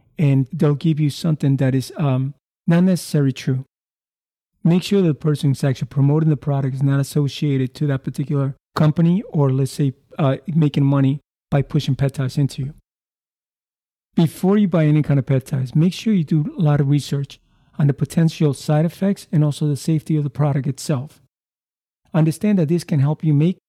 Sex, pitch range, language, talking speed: male, 140-165 Hz, English, 190 wpm